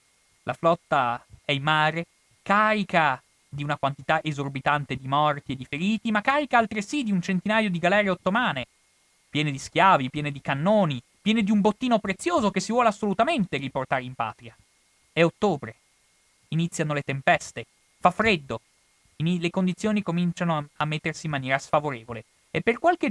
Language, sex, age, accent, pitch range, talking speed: Italian, male, 30-49, native, 135-200 Hz, 155 wpm